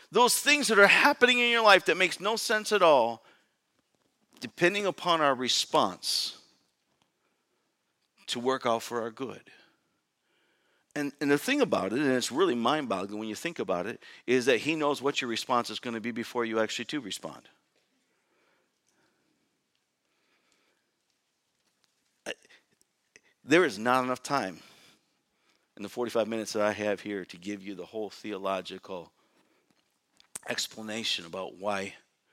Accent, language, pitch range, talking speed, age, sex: American, English, 100-140 Hz, 145 wpm, 50-69, male